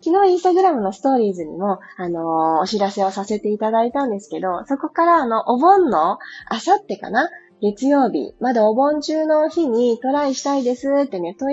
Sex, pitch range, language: female, 195-295 Hz, Japanese